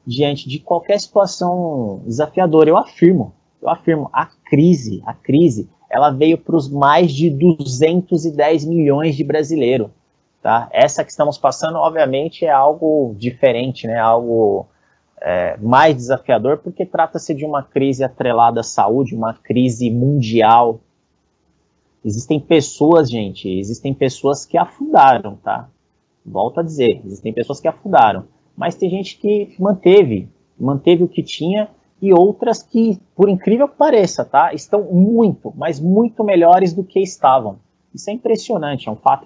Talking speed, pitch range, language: 140 wpm, 135-185 Hz, Portuguese